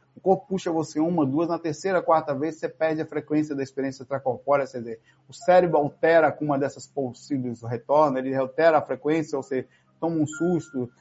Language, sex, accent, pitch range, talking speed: Portuguese, male, Brazilian, 135-160 Hz, 190 wpm